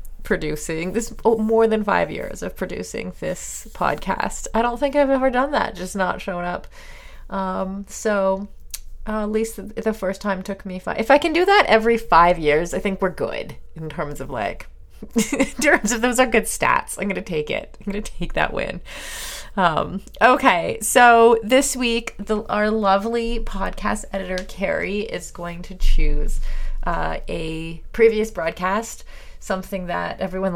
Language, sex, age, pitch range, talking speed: English, female, 30-49, 180-225 Hz, 175 wpm